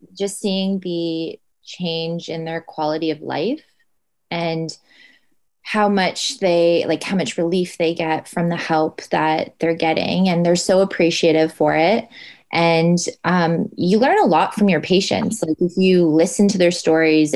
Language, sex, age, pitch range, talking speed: English, female, 20-39, 160-185 Hz, 160 wpm